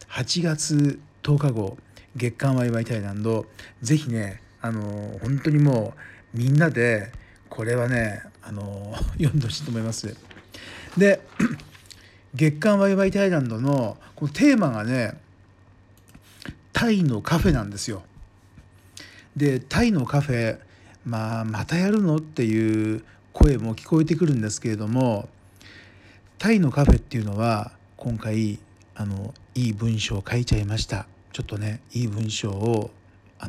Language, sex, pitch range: Japanese, male, 100-135 Hz